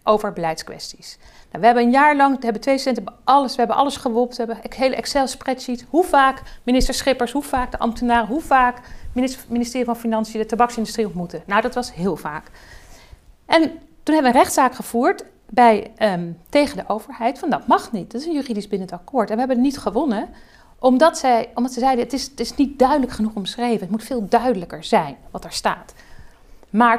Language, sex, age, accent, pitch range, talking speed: Dutch, female, 40-59, Dutch, 215-260 Hz, 215 wpm